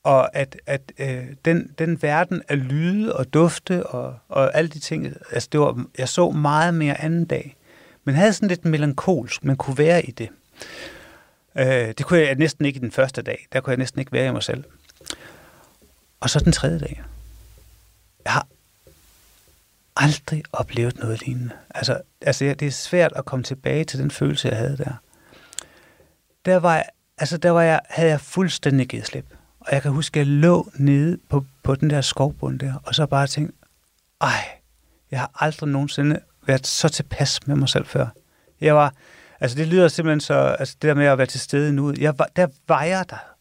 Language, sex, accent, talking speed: Danish, male, native, 200 wpm